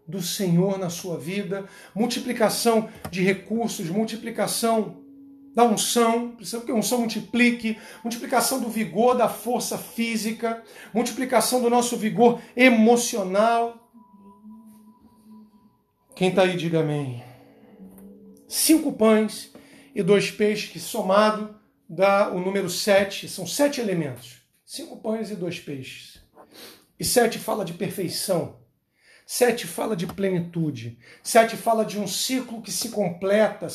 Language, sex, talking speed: Portuguese, male, 120 wpm